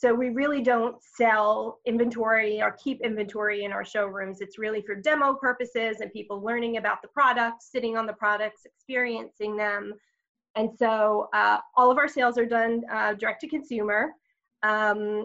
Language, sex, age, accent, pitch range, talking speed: English, female, 20-39, American, 215-260 Hz, 170 wpm